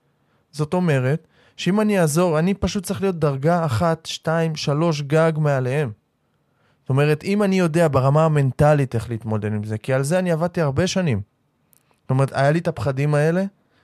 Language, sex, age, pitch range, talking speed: Hebrew, male, 20-39, 130-180 Hz, 175 wpm